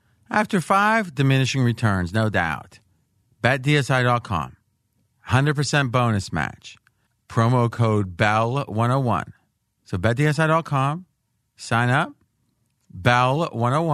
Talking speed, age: 80 wpm, 40-59